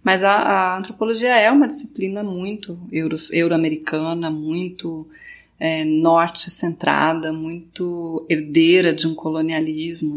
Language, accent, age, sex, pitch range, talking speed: Portuguese, Brazilian, 20-39, female, 170-215 Hz, 105 wpm